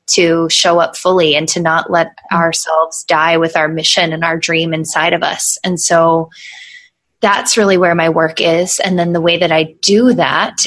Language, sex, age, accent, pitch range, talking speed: English, female, 20-39, American, 165-190 Hz, 195 wpm